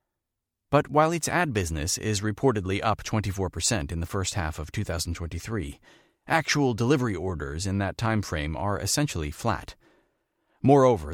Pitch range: 90-125 Hz